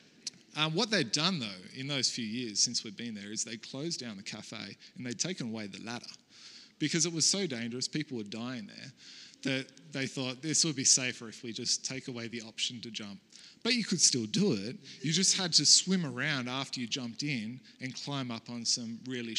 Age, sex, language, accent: 20-39, male, English, Australian